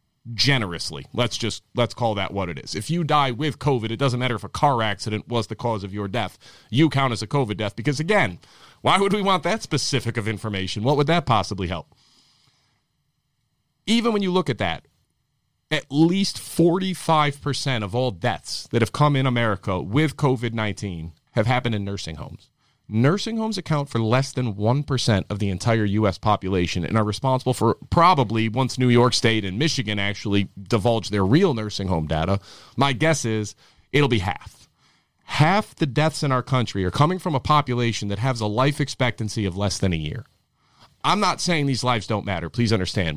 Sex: male